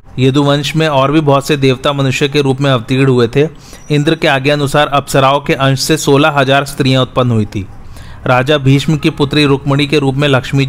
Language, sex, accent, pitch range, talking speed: Hindi, male, native, 130-145 Hz, 210 wpm